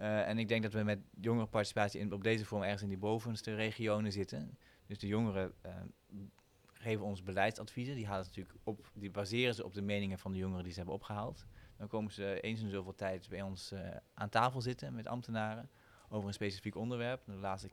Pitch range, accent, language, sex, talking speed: 95-110 Hz, Dutch, Dutch, male, 200 wpm